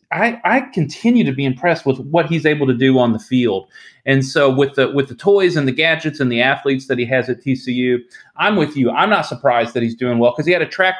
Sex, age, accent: male, 30-49, American